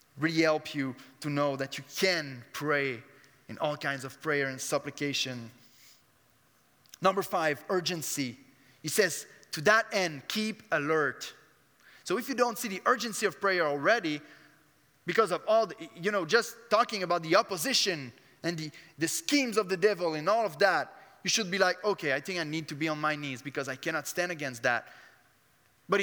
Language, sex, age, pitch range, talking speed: English, male, 20-39, 145-230 Hz, 180 wpm